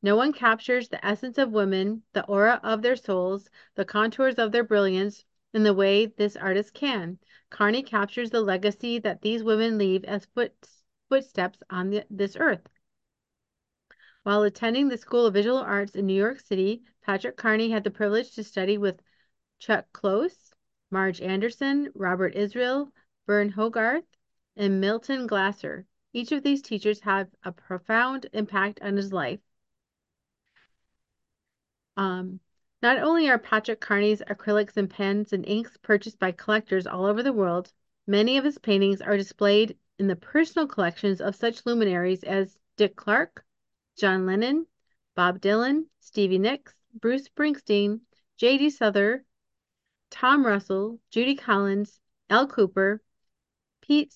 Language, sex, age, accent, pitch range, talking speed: English, female, 40-59, American, 195-240 Hz, 140 wpm